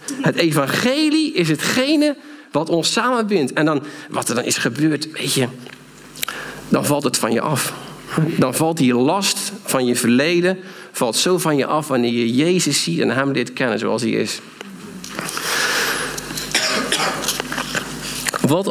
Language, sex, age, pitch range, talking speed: Dutch, male, 50-69, 125-200 Hz, 140 wpm